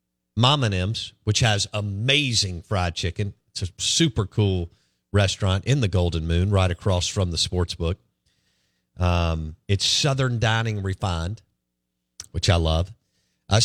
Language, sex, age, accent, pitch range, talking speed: English, male, 50-69, American, 90-120 Hz, 140 wpm